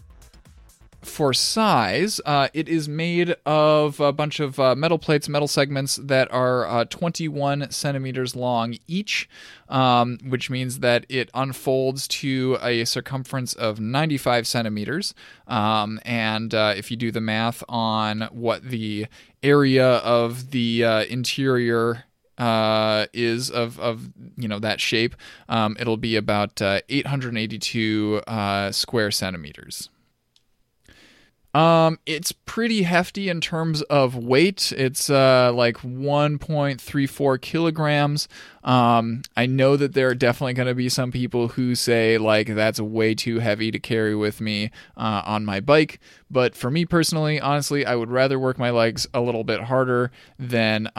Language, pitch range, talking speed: English, 110-140 Hz, 145 wpm